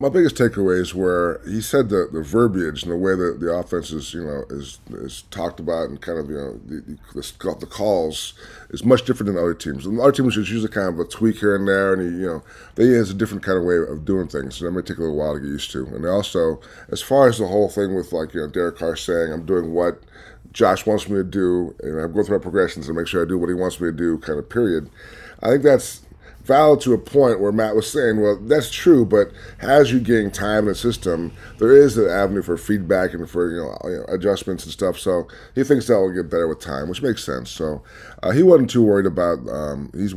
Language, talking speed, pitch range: English, 265 wpm, 80-105 Hz